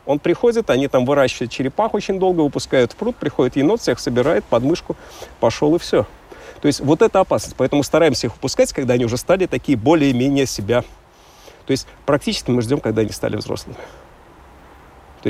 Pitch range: 120-175 Hz